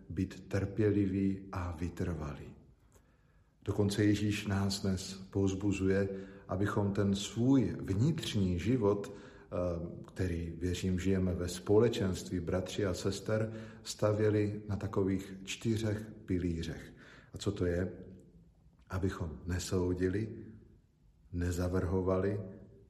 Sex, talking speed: male, 90 wpm